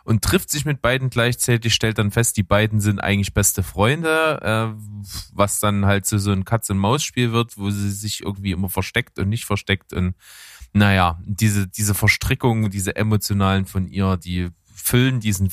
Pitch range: 100-120 Hz